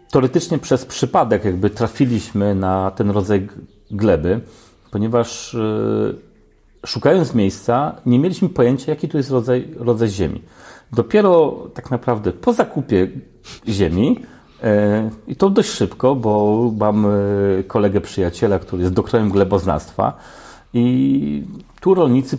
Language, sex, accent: Polish, male, native